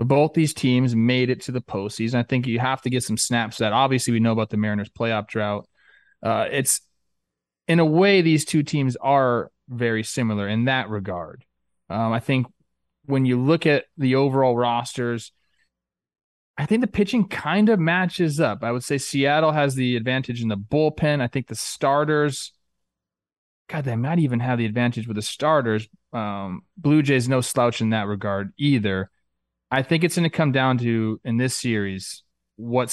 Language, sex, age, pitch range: English, male, 20-39, 110-140 Hz